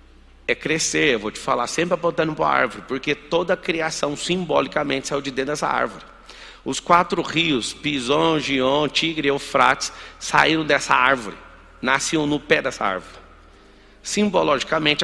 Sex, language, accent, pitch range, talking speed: male, Portuguese, Brazilian, 145-185 Hz, 150 wpm